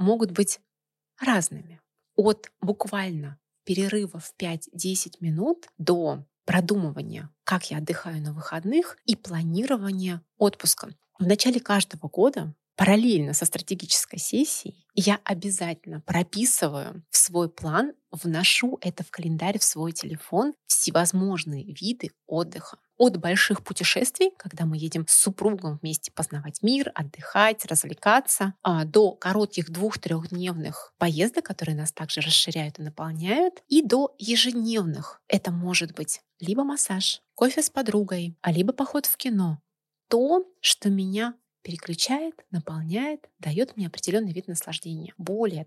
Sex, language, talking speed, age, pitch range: female, Russian, 120 wpm, 20-39, 165-215 Hz